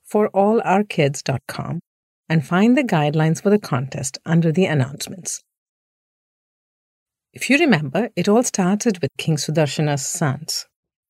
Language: English